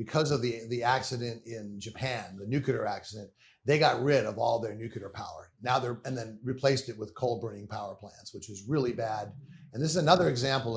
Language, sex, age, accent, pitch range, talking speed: English, male, 50-69, American, 115-150 Hz, 205 wpm